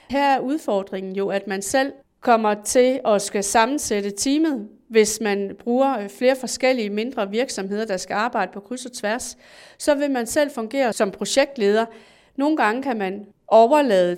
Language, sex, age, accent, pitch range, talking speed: Danish, female, 30-49, native, 200-250 Hz, 165 wpm